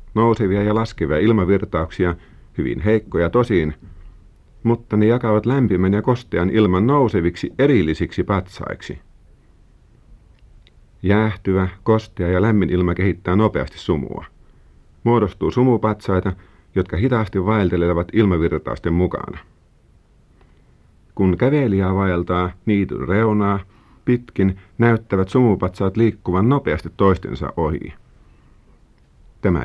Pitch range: 90-115 Hz